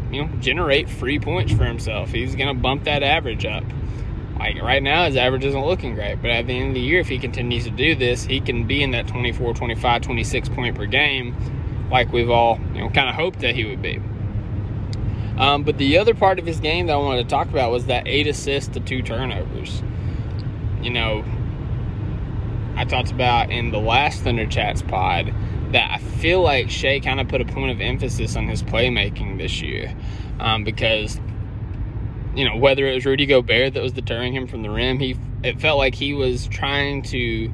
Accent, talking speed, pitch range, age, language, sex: American, 210 wpm, 110-130 Hz, 20-39, English, male